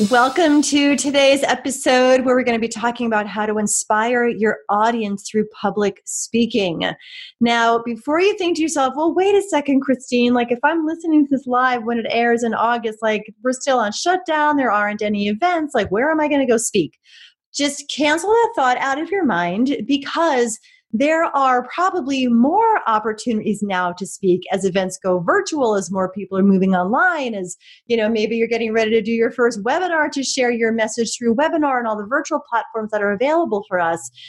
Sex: female